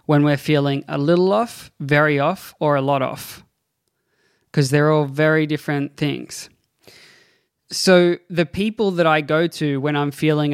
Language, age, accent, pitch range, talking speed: English, 20-39, Australian, 140-165 Hz, 160 wpm